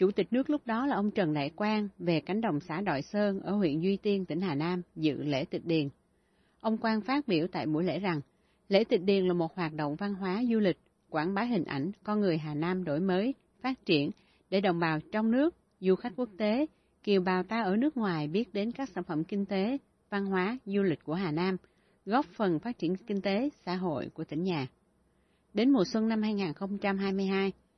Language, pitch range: Vietnamese, 170-215 Hz